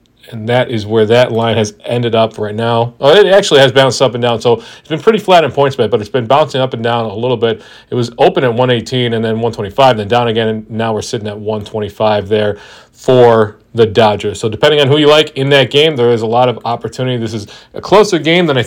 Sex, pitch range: male, 115-150 Hz